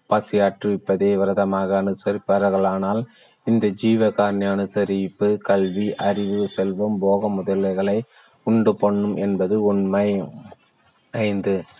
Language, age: Tamil, 30-49